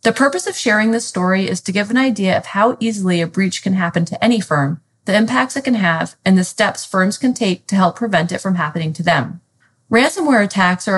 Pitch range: 180-230 Hz